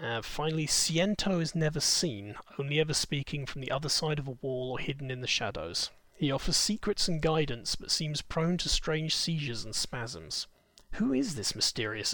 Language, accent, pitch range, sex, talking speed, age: English, British, 125-160 Hz, male, 190 wpm, 30-49